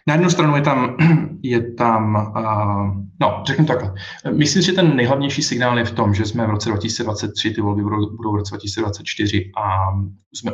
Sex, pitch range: male, 105-115 Hz